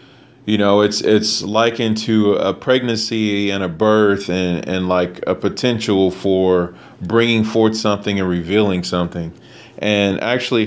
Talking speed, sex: 140 wpm, male